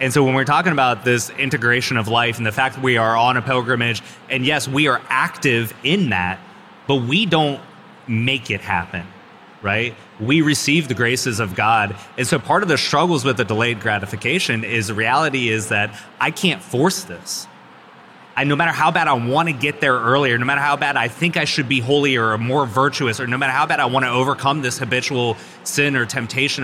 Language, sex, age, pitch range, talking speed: English, male, 20-39, 110-140 Hz, 215 wpm